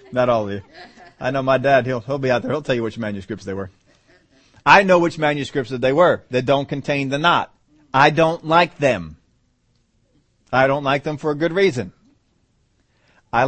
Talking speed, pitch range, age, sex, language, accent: 200 wpm, 120-145 Hz, 40-59, male, English, American